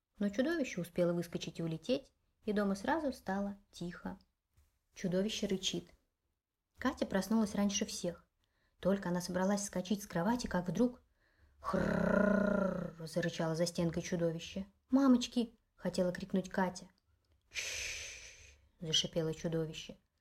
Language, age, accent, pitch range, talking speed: Russian, 20-39, native, 170-200 Hz, 115 wpm